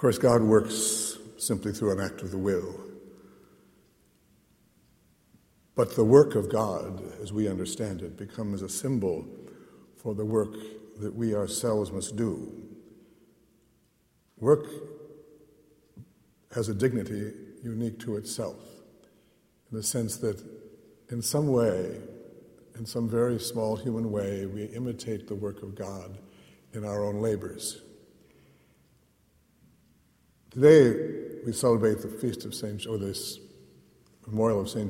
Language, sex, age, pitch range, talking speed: English, male, 60-79, 105-120 Hz, 125 wpm